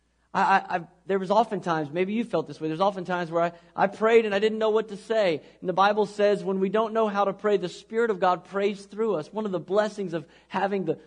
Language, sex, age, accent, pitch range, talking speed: English, male, 40-59, American, 145-185 Hz, 250 wpm